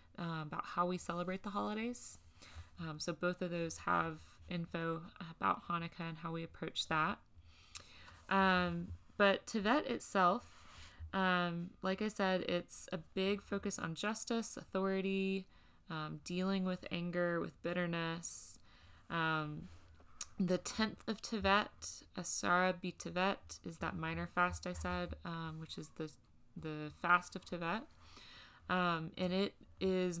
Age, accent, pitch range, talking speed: 20-39, American, 155-185 Hz, 135 wpm